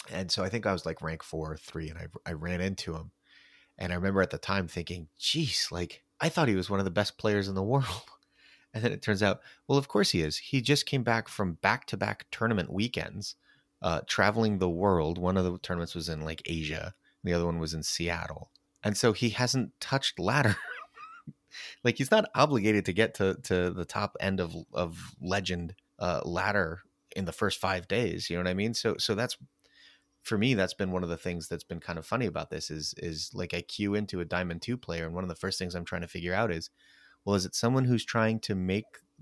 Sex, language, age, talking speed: male, English, 30-49, 240 wpm